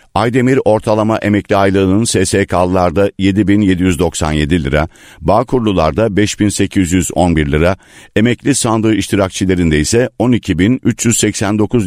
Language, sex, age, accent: Turkish, male, 50-69, native